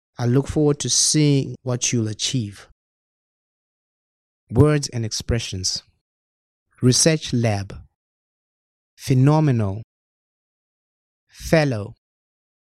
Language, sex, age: Chinese, male, 30-49